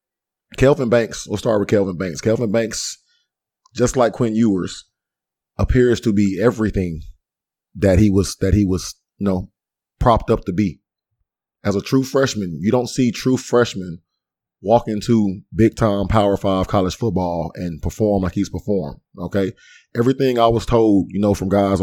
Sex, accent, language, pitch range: male, American, English, 95-115 Hz